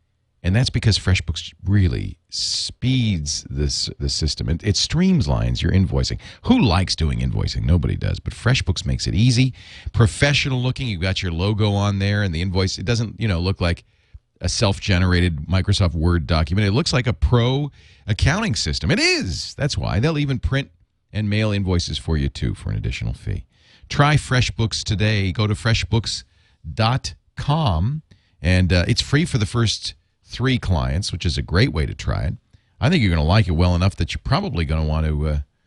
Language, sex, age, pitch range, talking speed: English, male, 40-59, 85-115 Hz, 185 wpm